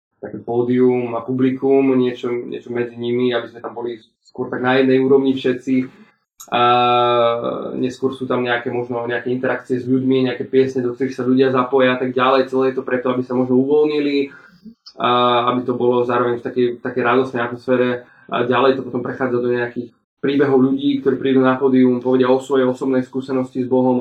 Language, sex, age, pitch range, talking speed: Slovak, male, 20-39, 120-130 Hz, 190 wpm